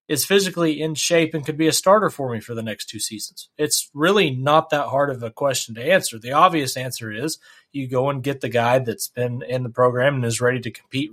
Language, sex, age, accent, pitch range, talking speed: English, male, 30-49, American, 130-155 Hz, 250 wpm